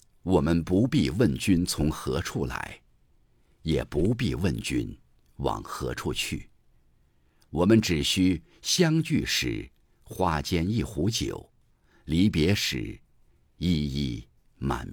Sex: male